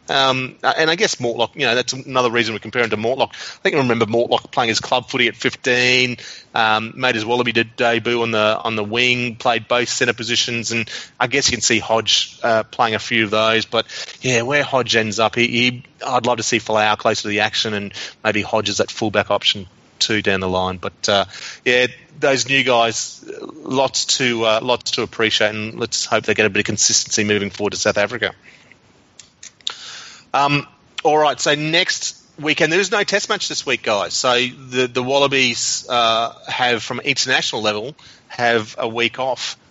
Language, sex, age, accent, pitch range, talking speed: English, male, 30-49, Australian, 115-135 Hz, 200 wpm